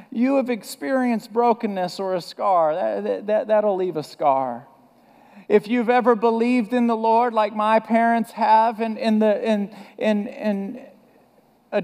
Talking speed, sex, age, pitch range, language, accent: 155 wpm, male, 50-69, 190-235 Hz, English, American